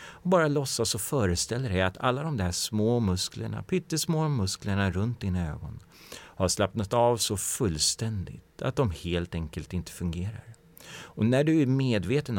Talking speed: 155 wpm